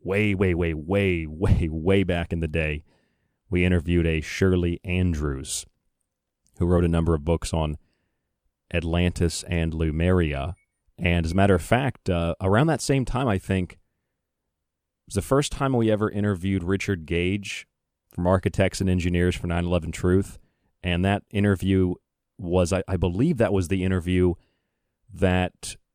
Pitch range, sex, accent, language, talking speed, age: 85-100 Hz, male, American, English, 155 wpm, 30-49